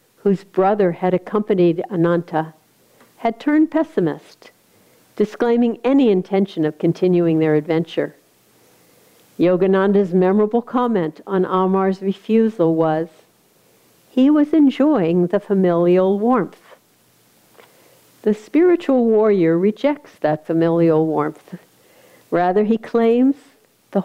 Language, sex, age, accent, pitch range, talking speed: English, female, 50-69, American, 170-225 Hz, 95 wpm